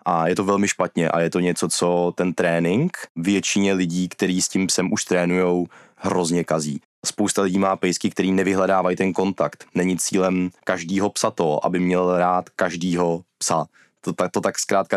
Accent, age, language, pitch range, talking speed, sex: native, 20-39, Czech, 90-95 Hz, 180 wpm, male